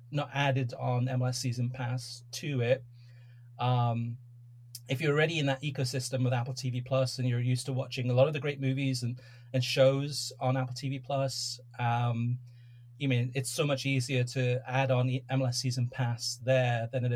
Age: 30-49